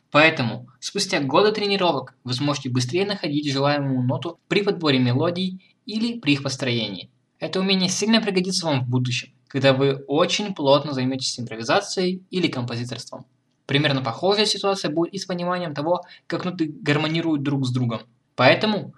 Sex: male